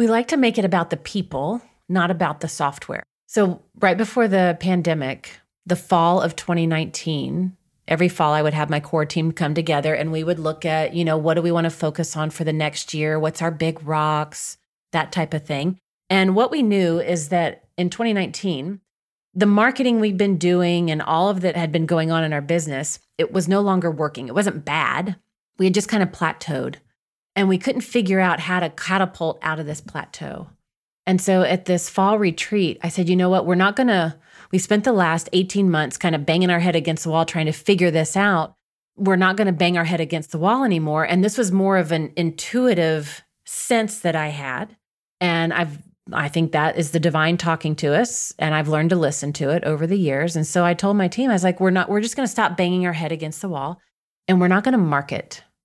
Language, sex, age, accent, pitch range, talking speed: English, female, 30-49, American, 160-190 Hz, 225 wpm